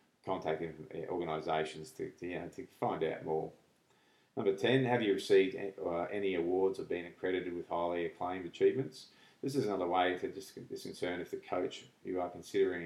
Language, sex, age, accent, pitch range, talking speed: English, male, 30-49, Australian, 85-105 Hz, 180 wpm